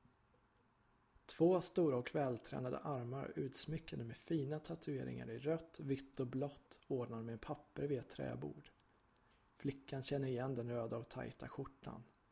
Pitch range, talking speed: 125-150 Hz, 135 wpm